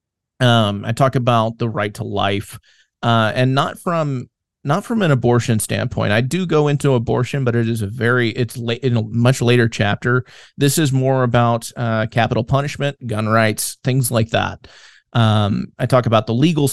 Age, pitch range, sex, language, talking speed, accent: 30-49, 110-130 Hz, male, English, 185 wpm, American